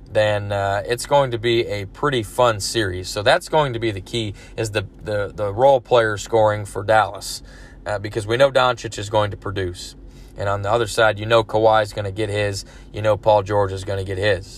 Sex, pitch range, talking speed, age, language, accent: male, 100-120 Hz, 235 wpm, 20-39, English, American